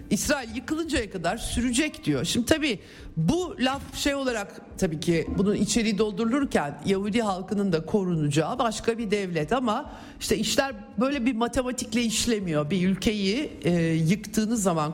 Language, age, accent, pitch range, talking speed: Turkish, 50-69, native, 160-235 Hz, 140 wpm